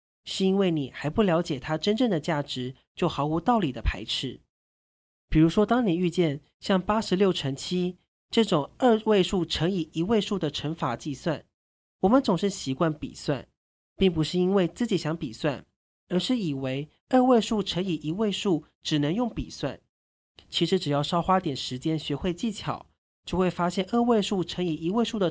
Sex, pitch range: male, 150-205 Hz